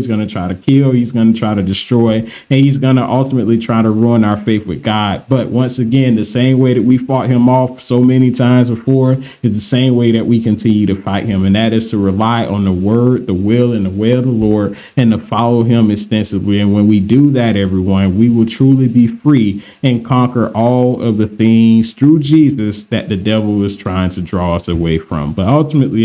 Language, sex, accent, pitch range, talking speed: English, male, American, 105-130 Hz, 235 wpm